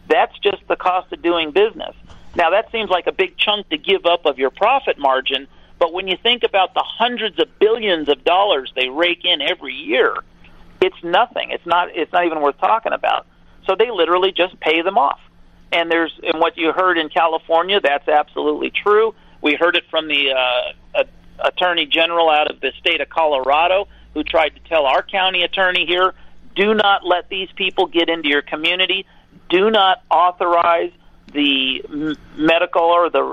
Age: 40-59